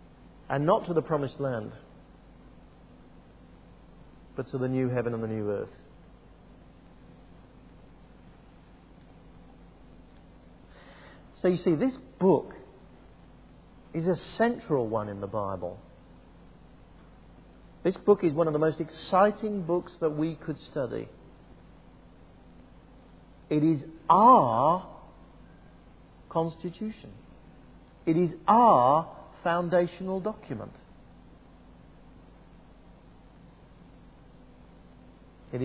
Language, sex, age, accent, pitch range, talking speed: English, male, 50-69, British, 115-180 Hz, 85 wpm